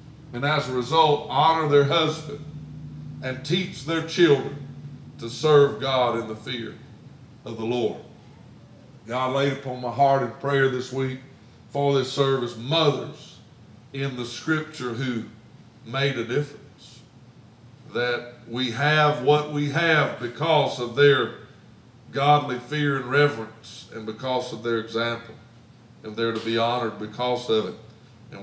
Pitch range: 115-145 Hz